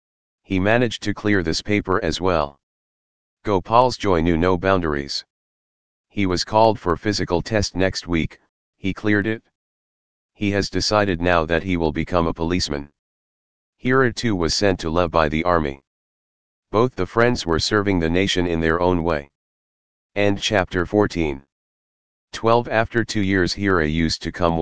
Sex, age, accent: male, 40-59, American